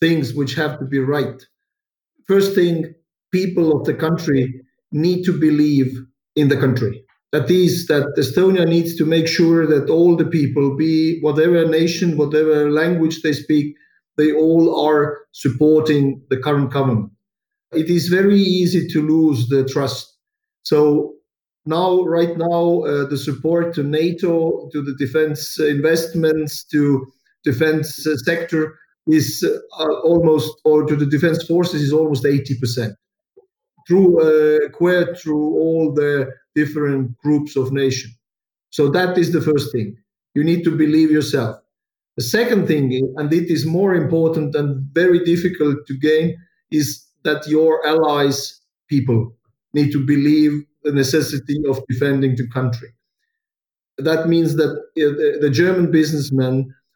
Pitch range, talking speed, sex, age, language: 140-165 Hz, 140 wpm, male, 50-69, English